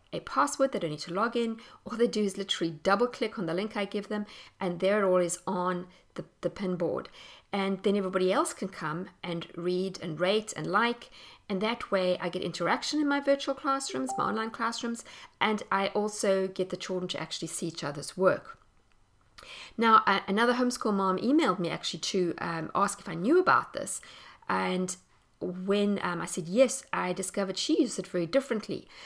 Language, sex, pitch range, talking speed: English, female, 180-230 Hz, 195 wpm